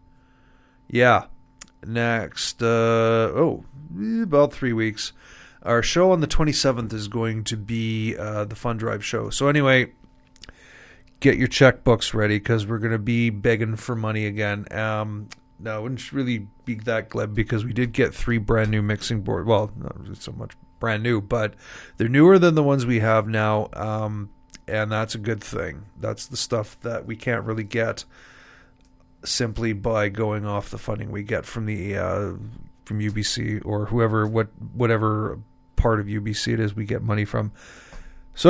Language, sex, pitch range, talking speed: English, male, 110-125 Hz, 170 wpm